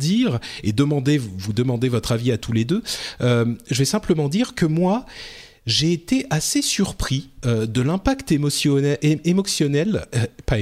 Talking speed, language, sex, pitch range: 160 wpm, French, male, 115-145 Hz